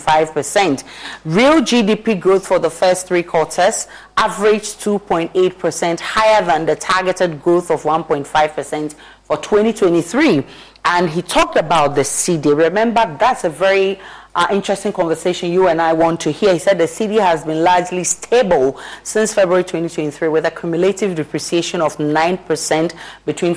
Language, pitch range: English, 160-195 Hz